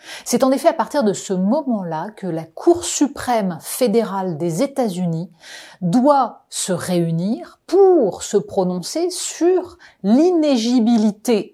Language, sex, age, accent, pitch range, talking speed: French, female, 30-49, French, 195-270 Hz, 120 wpm